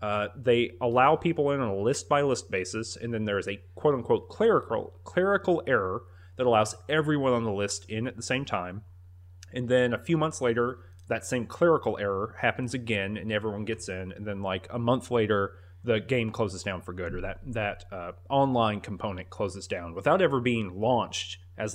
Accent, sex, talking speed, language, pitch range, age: American, male, 195 wpm, English, 95-120 Hz, 30-49